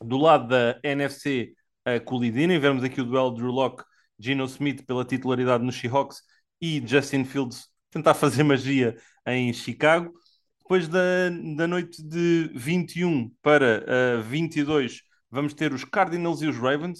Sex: male